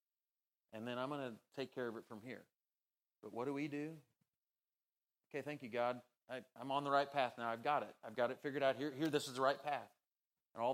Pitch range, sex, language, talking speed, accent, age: 115-140 Hz, male, English, 240 wpm, American, 30-49